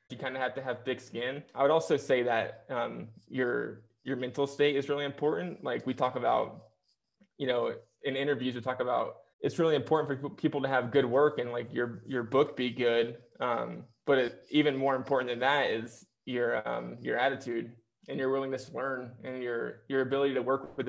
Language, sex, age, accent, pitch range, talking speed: English, male, 20-39, American, 120-140 Hz, 210 wpm